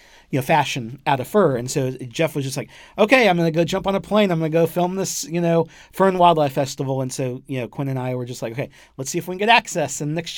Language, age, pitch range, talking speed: English, 40-59, 120-155 Hz, 305 wpm